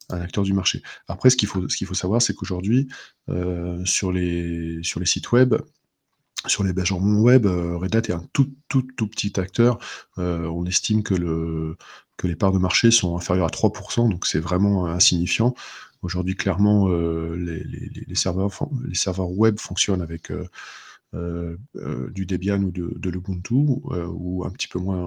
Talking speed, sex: 190 wpm, male